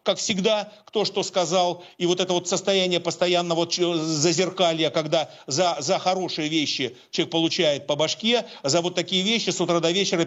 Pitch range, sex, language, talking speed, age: 170-205 Hz, male, Russian, 180 wpm, 50-69